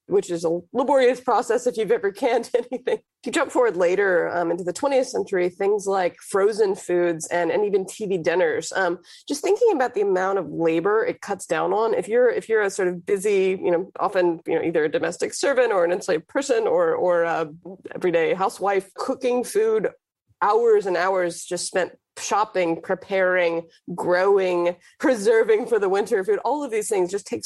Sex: female